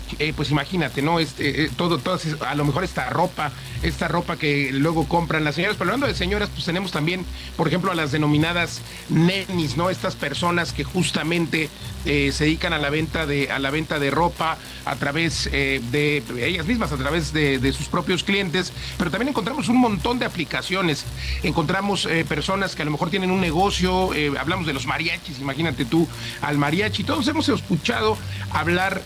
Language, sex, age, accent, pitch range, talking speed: Spanish, male, 40-59, Mexican, 150-180 Hz, 195 wpm